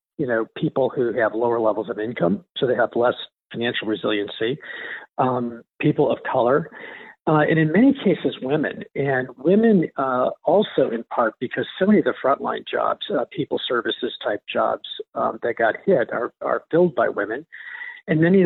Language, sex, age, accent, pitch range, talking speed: English, male, 50-69, American, 125-175 Hz, 180 wpm